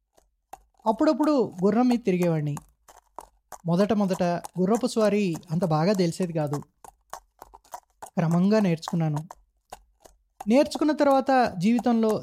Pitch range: 175-225 Hz